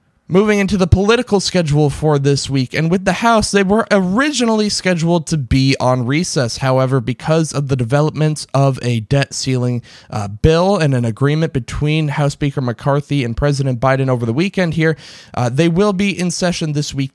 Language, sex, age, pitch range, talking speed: English, male, 20-39, 125-170 Hz, 185 wpm